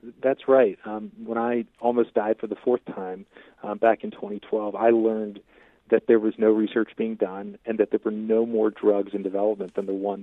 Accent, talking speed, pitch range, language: American, 210 wpm, 105-115 Hz, English